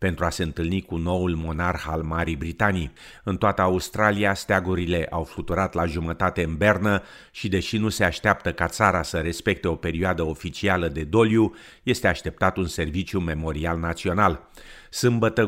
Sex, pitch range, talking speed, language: male, 85-100 Hz, 160 wpm, Romanian